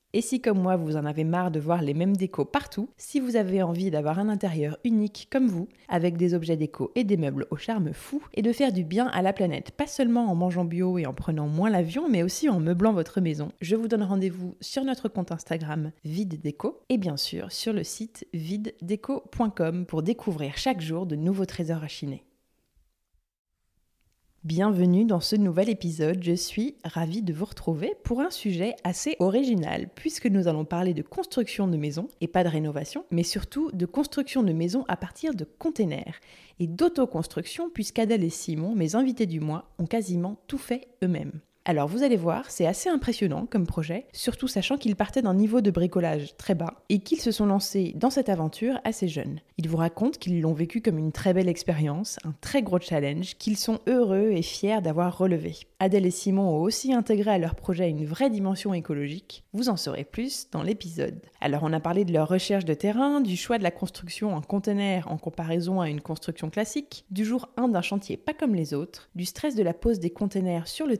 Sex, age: female, 20-39